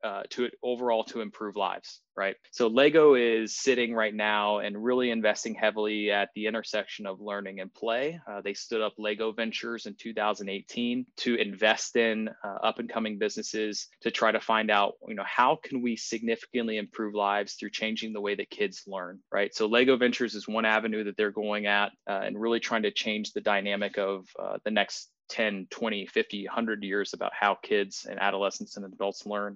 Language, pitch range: English, 100-115 Hz